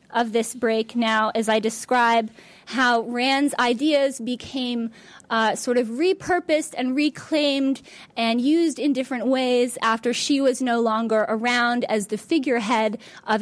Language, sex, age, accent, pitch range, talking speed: English, female, 20-39, American, 225-285 Hz, 145 wpm